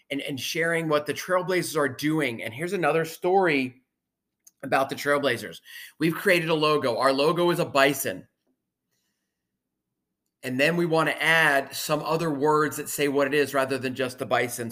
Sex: male